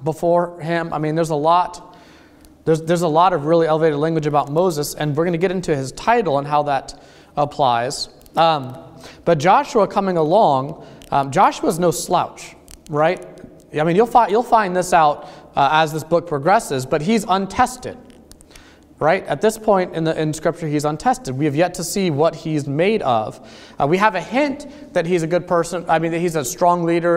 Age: 30-49